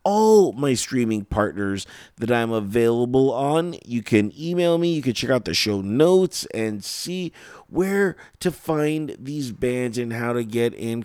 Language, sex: English, male